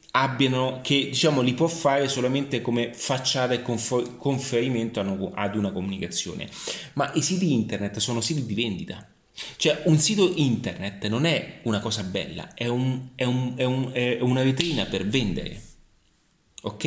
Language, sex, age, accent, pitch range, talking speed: Italian, male, 30-49, native, 110-145 Hz, 155 wpm